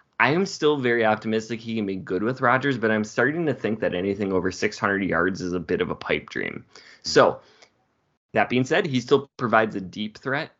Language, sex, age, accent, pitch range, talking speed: English, male, 20-39, American, 95-115 Hz, 215 wpm